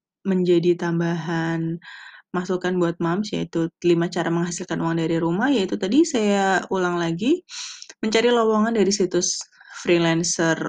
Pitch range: 170-230 Hz